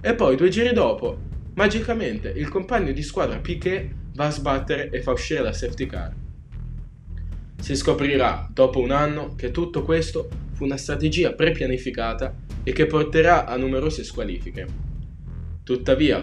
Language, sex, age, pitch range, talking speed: Italian, male, 20-39, 100-155 Hz, 145 wpm